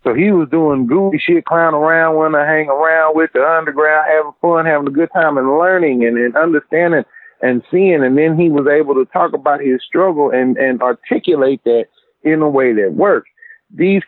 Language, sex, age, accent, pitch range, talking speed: English, male, 40-59, American, 125-170 Hz, 205 wpm